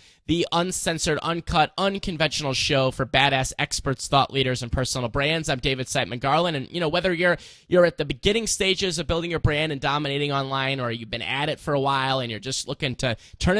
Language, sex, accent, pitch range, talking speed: English, male, American, 125-160 Hz, 210 wpm